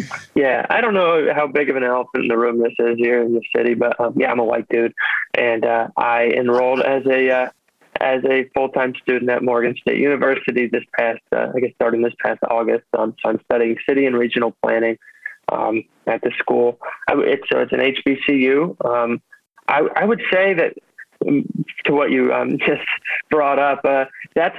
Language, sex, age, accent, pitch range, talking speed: English, male, 20-39, American, 120-140 Hz, 205 wpm